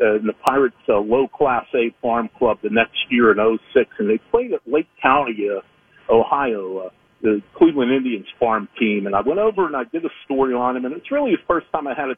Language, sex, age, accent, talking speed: English, male, 50-69, American, 230 wpm